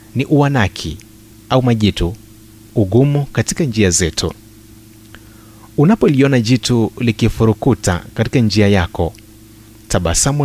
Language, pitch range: Swahili, 105-125 Hz